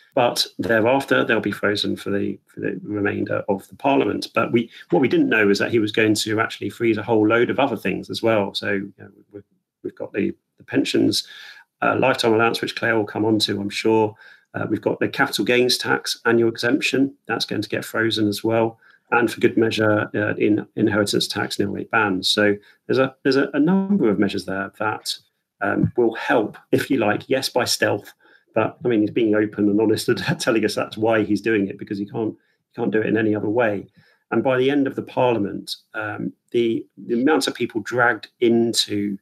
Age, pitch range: 40-59, 105-115 Hz